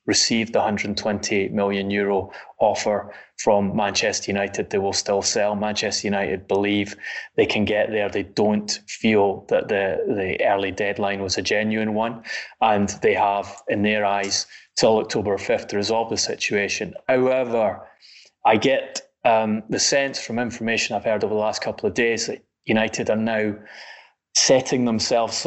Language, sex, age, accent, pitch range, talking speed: English, male, 20-39, British, 100-115 Hz, 160 wpm